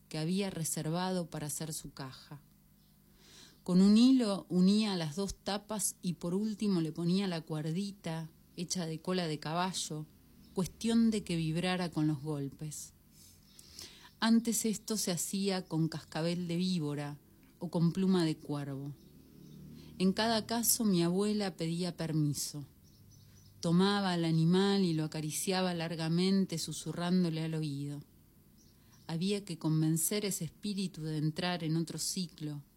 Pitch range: 155-185 Hz